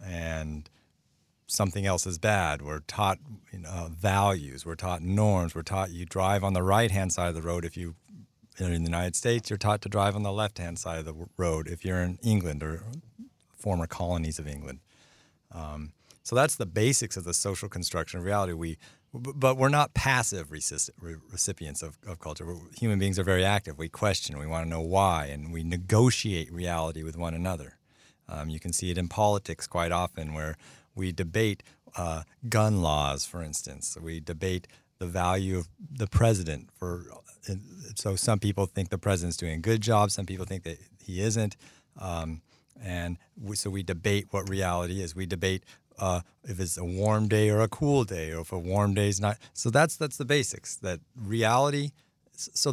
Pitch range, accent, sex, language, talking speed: 85-105 Hz, American, male, English, 190 wpm